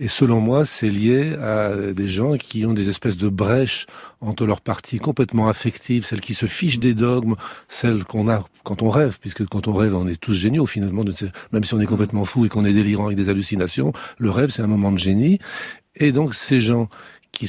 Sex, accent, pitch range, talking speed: male, French, 105-130 Hz, 225 wpm